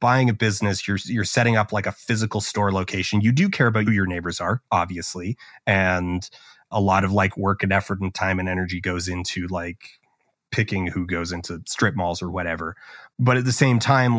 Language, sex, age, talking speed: English, male, 30-49, 205 wpm